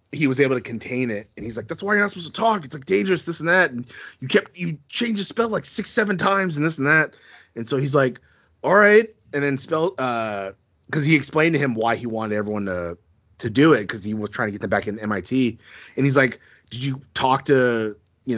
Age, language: 20-39, English